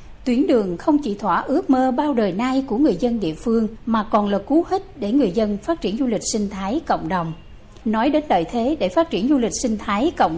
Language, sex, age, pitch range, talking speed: Vietnamese, female, 60-79, 205-280 Hz, 250 wpm